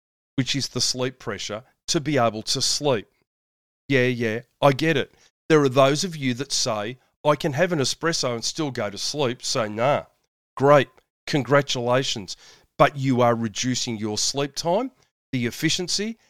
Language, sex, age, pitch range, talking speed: English, male, 40-59, 120-155 Hz, 165 wpm